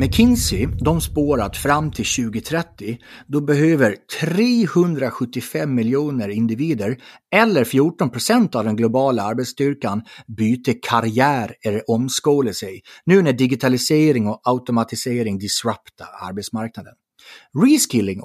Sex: male